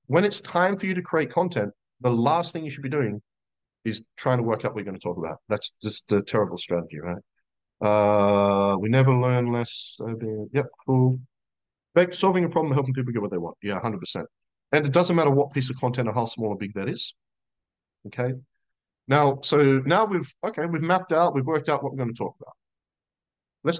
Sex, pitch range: male, 110-150 Hz